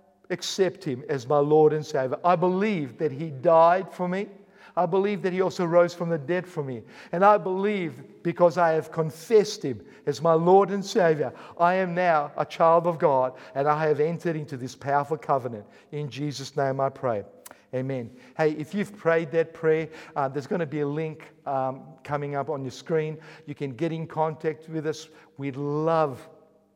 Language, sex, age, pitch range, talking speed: English, male, 50-69, 145-165 Hz, 195 wpm